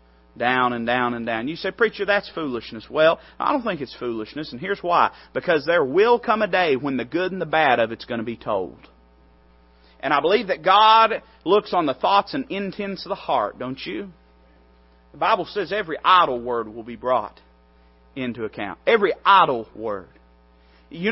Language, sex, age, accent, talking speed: English, male, 30-49, American, 195 wpm